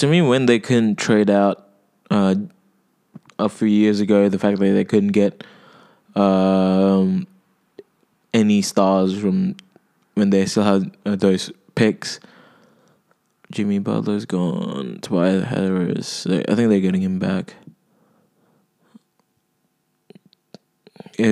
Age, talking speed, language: 20-39, 120 wpm, English